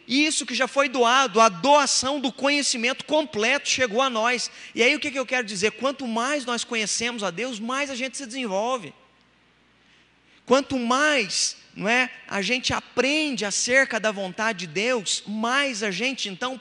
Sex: male